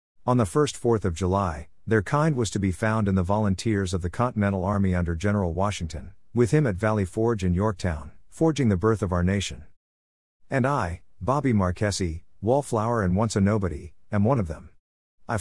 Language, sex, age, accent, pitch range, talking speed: English, male, 50-69, American, 90-115 Hz, 190 wpm